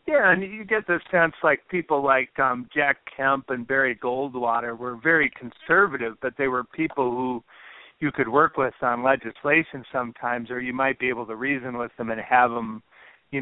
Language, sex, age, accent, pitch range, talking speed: English, male, 50-69, American, 125-145 Hz, 190 wpm